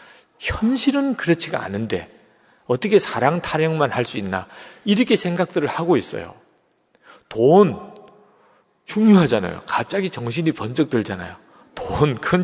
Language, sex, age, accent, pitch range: Korean, male, 40-59, native, 110-160 Hz